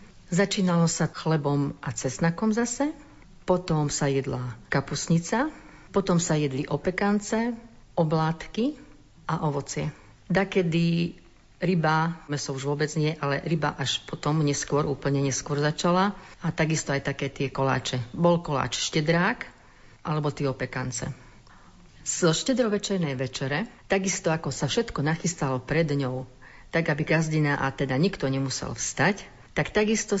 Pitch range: 140-175 Hz